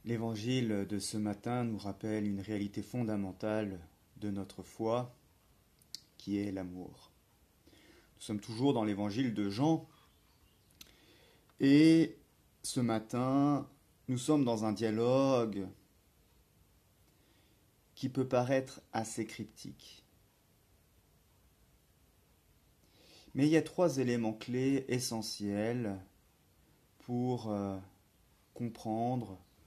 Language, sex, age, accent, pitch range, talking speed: French, male, 30-49, French, 95-125 Hz, 95 wpm